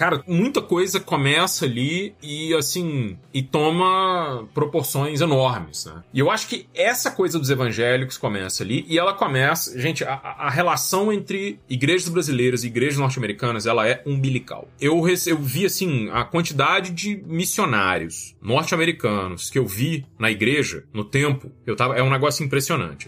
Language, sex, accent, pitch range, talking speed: Portuguese, male, Brazilian, 110-155 Hz, 155 wpm